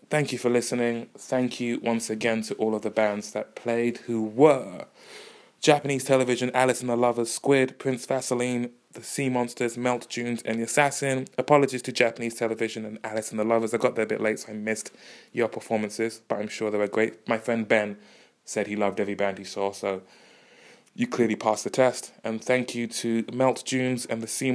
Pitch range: 105-125 Hz